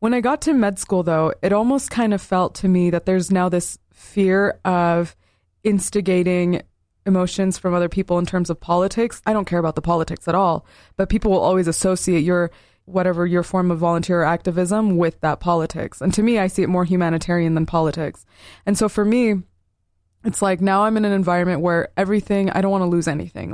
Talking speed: 205 wpm